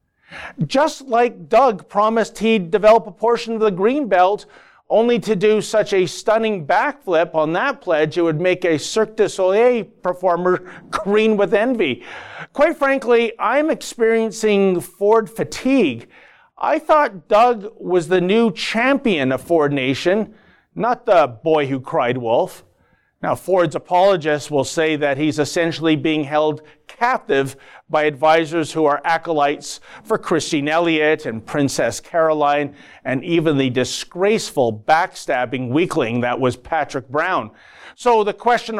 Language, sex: English, male